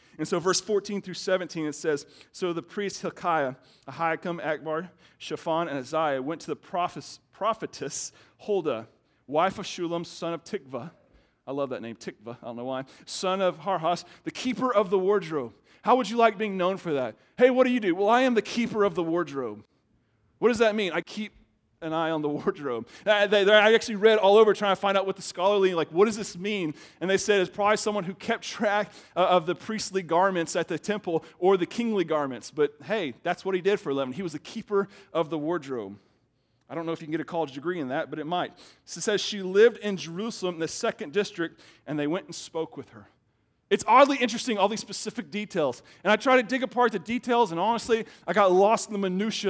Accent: American